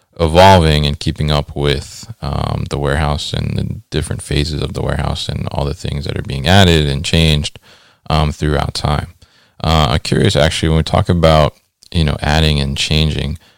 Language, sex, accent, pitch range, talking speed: English, male, American, 75-90 Hz, 180 wpm